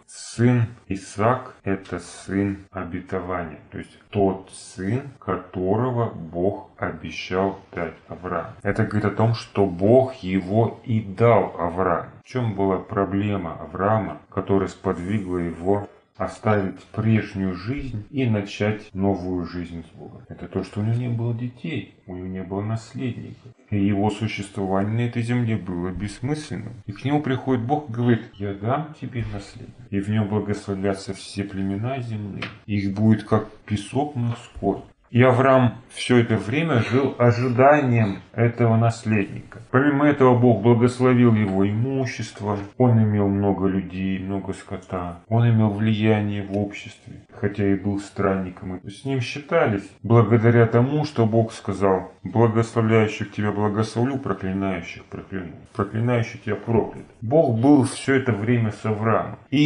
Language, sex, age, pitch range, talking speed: Russian, male, 30-49, 95-120 Hz, 145 wpm